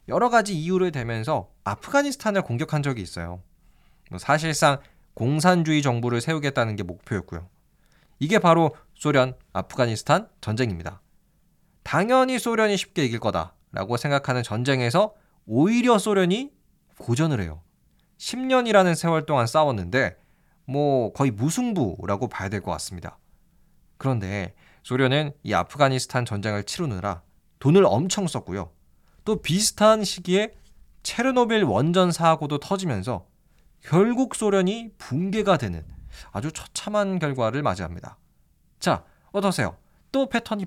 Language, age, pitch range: Korean, 20-39, 115-190 Hz